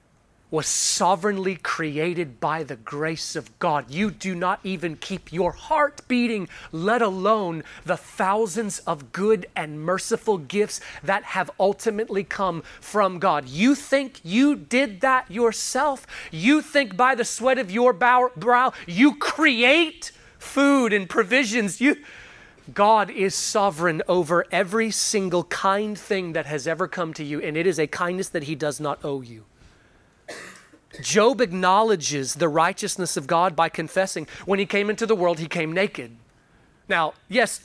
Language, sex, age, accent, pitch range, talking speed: English, male, 30-49, American, 165-230 Hz, 150 wpm